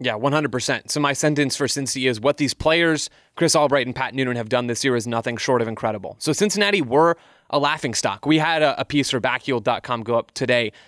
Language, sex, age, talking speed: English, male, 20-39, 220 wpm